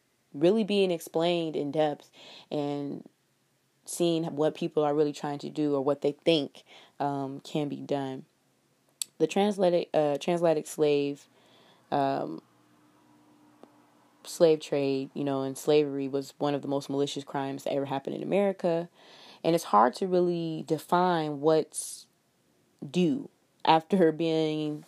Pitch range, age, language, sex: 145-165 Hz, 20-39, English, female